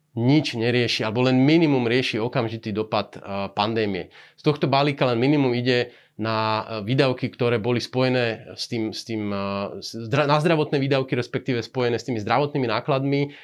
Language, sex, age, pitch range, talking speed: Slovak, male, 30-49, 115-140 Hz, 145 wpm